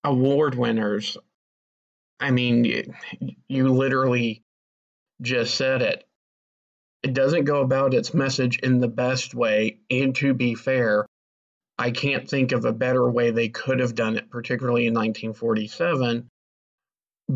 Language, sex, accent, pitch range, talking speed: English, male, American, 115-130 Hz, 130 wpm